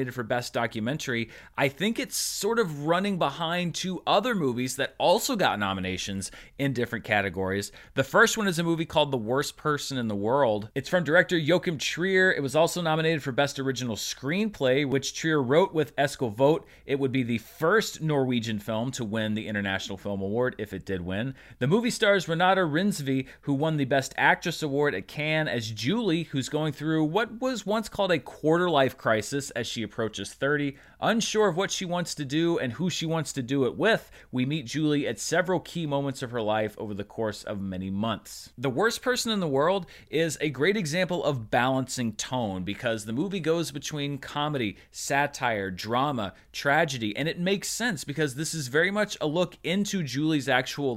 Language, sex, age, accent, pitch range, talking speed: English, male, 30-49, American, 125-170 Hz, 195 wpm